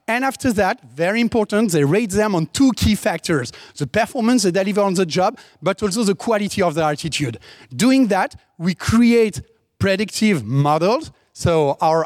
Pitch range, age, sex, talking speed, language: 170-230 Hz, 40-59, male, 170 wpm, English